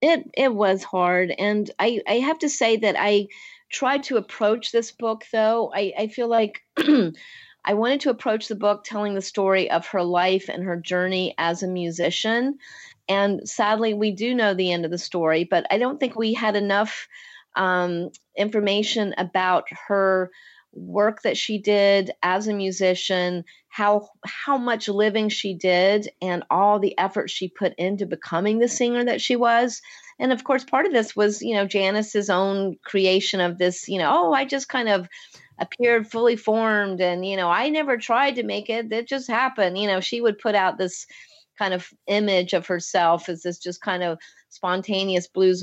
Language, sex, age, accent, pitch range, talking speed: English, female, 40-59, American, 180-220 Hz, 185 wpm